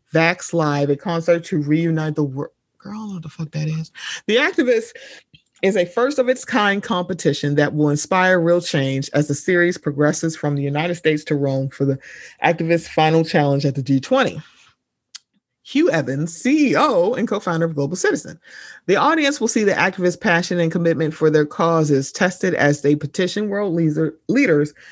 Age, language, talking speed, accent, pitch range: 30-49, English, 170 wpm, American, 150-195 Hz